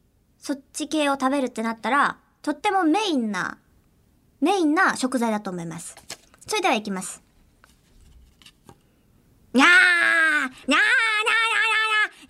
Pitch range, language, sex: 230-360 Hz, Japanese, male